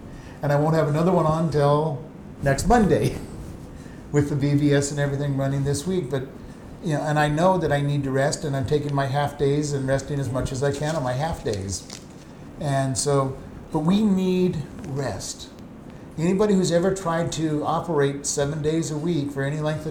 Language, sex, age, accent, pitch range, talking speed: English, male, 50-69, American, 135-165 Hz, 195 wpm